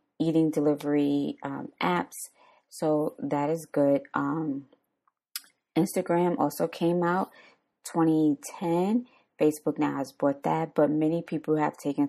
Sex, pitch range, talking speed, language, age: female, 150-175 Hz, 120 wpm, English, 20-39